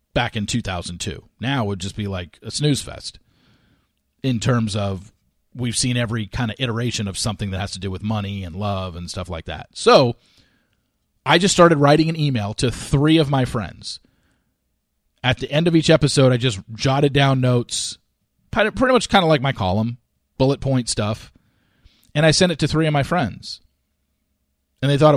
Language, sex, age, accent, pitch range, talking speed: English, male, 40-59, American, 105-160 Hz, 190 wpm